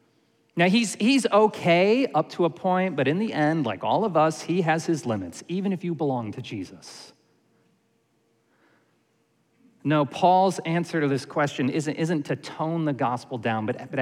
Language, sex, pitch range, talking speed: English, male, 135-165 Hz, 175 wpm